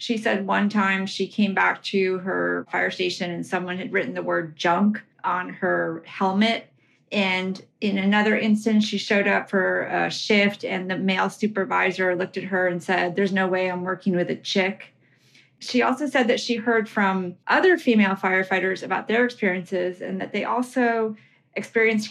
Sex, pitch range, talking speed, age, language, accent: female, 185-220 Hz, 180 wpm, 30-49, English, American